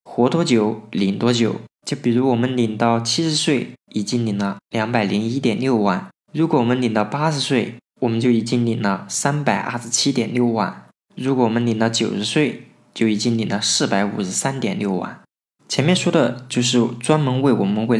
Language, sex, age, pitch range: Chinese, male, 20-39, 110-130 Hz